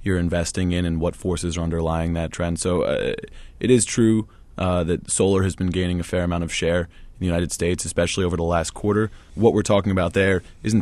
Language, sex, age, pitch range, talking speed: English, male, 20-39, 85-100 Hz, 225 wpm